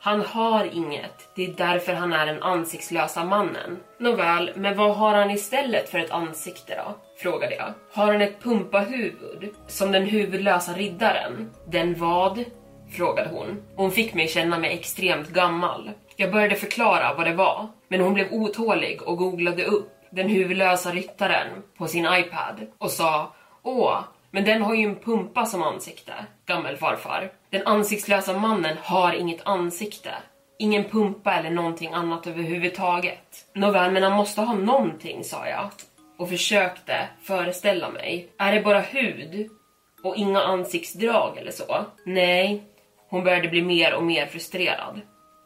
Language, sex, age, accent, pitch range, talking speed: Swedish, female, 20-39, native, 175-210 Hz, 155 wpm